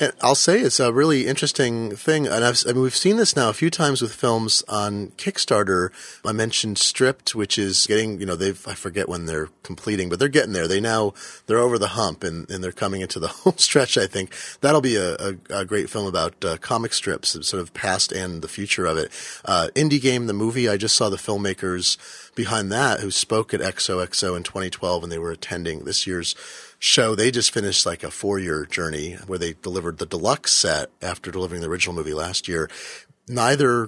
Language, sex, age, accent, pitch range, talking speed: English, male, 30-49, American, 95-125 Hz, 220 wpm